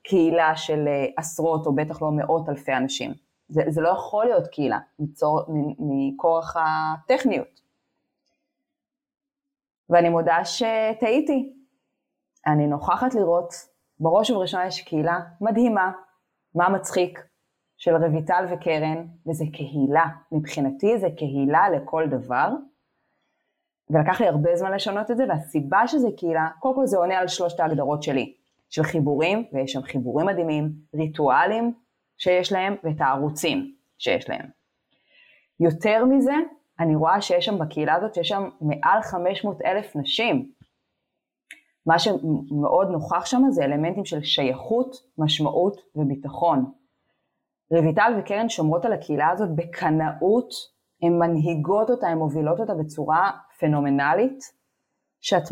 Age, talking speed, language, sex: 20-39, 120 wpm, Hebrew, female